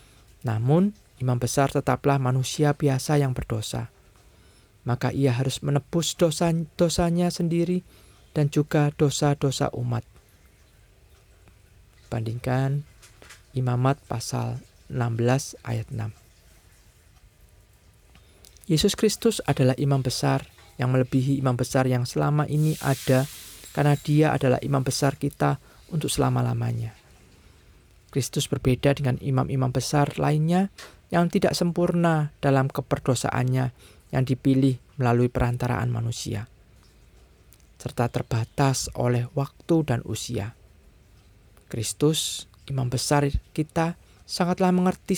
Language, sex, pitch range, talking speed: Indonesian, male, 115-145 Hz, 100 wpm